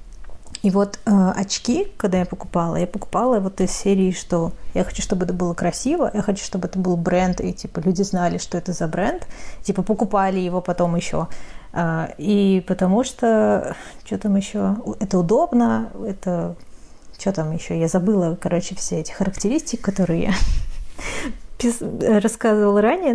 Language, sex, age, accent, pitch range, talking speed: Russian, female, 30-49, native, 180-220 Hz, 160 wpm